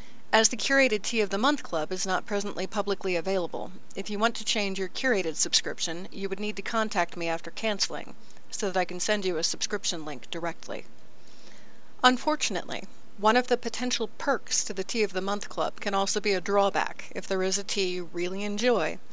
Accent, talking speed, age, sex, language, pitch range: American, 205 wpm, 40-59, female, English, 180-215 Hz